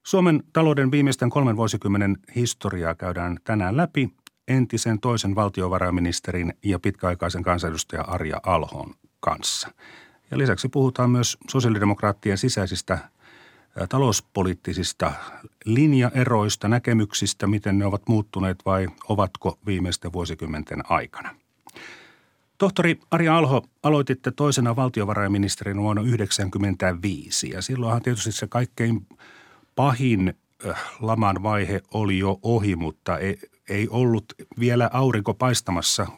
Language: Finnish